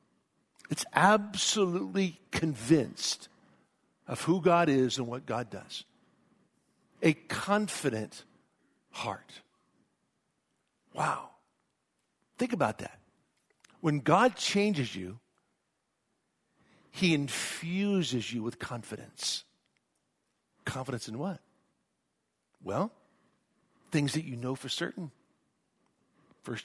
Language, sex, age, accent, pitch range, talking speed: English, male, 60-79, American, 140-210 Hz, 85 wpm